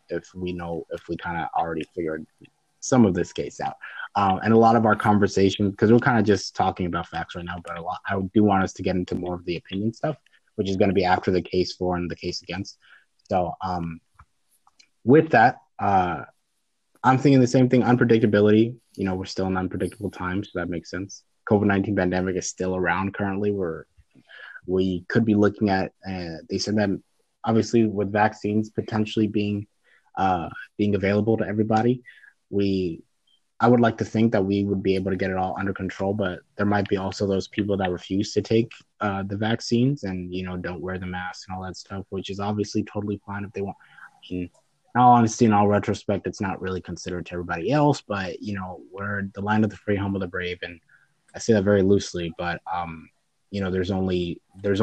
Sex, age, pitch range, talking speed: male, 20-39, 95-105 Hz, 215 wpm